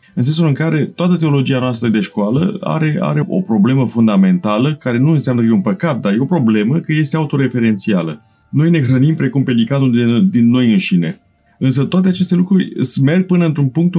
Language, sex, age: Romanian, male, 30-49